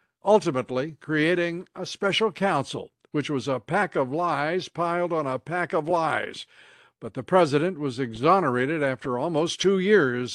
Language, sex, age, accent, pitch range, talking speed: English, male, 60-79, American, 140-180 Hz, 150 wpm